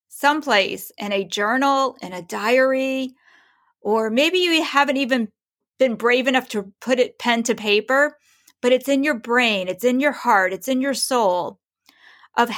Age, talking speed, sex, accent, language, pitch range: 40-59, 165 wpm, female, American, English, 215-285 Hz